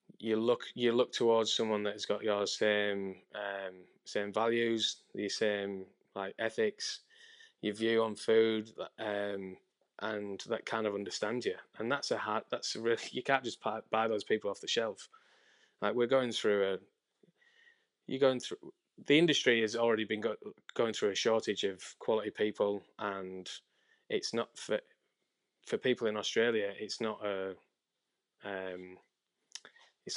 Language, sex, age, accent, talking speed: English, male, 20-39, British, 155 wpm